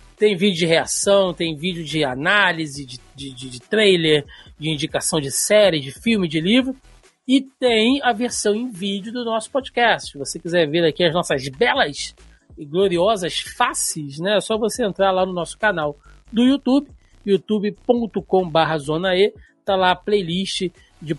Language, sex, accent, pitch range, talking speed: Portuguese, male, Brazilian, 155-210 Hz, 165 wpm